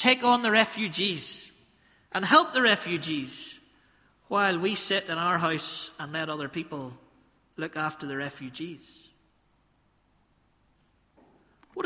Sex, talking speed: male, 115 wpm